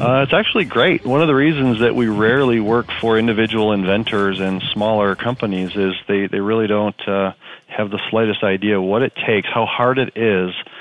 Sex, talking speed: male, 195 wpm